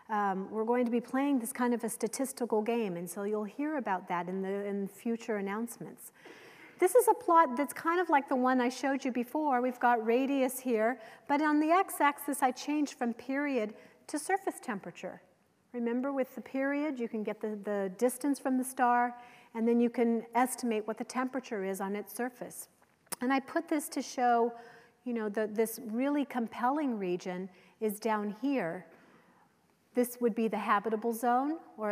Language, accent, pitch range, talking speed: English, American, 205-255 Hz, 190 wpm